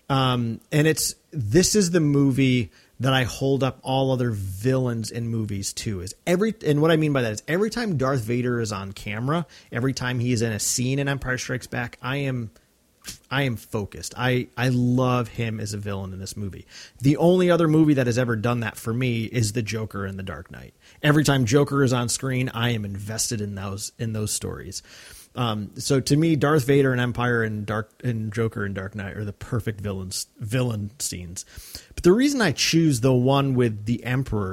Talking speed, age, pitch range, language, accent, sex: 210 wpm, 30-49, 110-135 Hz, English, American, male